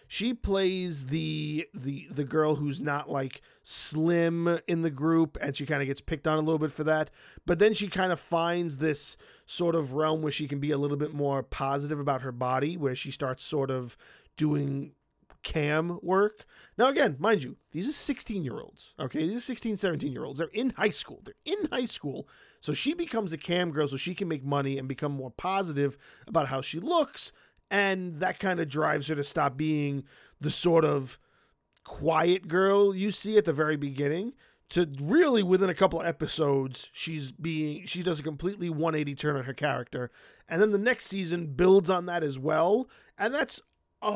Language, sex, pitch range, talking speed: English, male, 145-195 Hz, 195 wpm